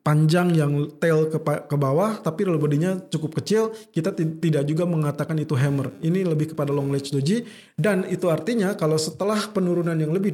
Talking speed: 175 wpm